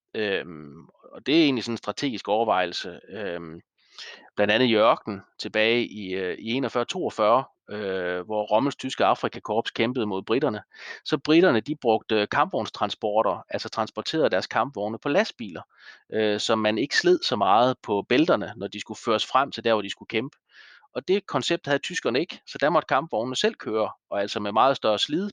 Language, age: Danish, 30-49